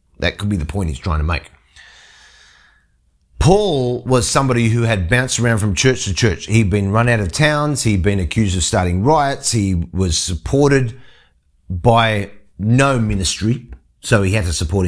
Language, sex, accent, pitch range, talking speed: English, male, Australian, 80-125 Hz, 175 wpm